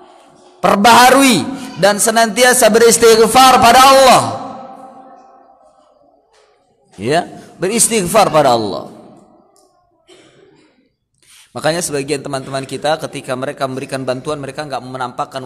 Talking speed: 80 wpm